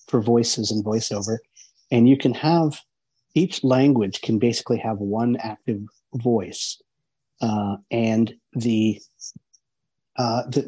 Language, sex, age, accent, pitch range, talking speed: English, male, 50-69, American, 110-125 Hz, 120 wpm